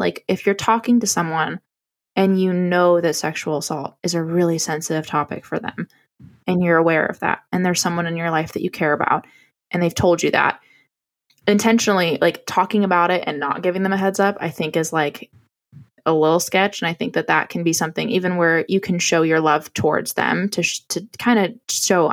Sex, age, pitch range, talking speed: female, 20-39, 165-205 Hz, 220 wpm